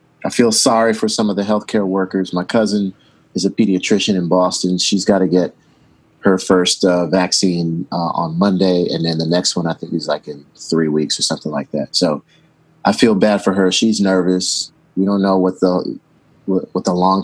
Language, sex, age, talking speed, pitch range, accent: English, male, 30-49, 210 wpm, 85-100 Hz, American